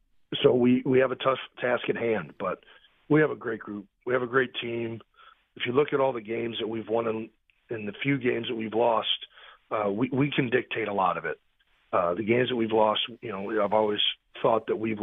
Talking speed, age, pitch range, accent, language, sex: 245 wpm, 40-59, 105-120 Hz, American, English, male